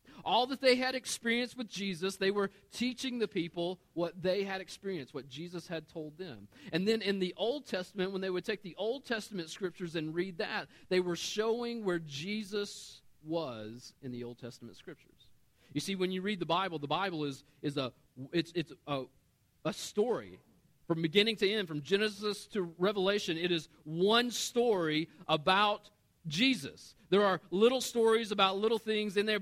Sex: male